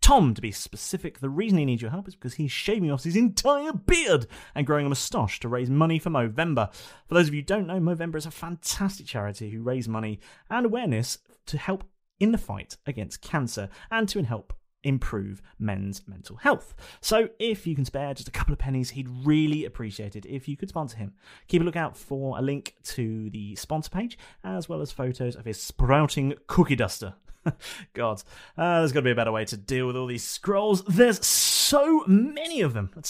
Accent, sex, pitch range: British, male, 120-180 Hz